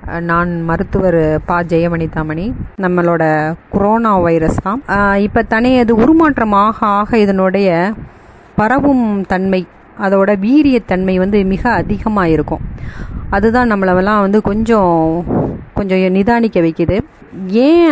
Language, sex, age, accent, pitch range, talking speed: Tamil, female, 30-49, native, 185-225 Hz, 95 wpm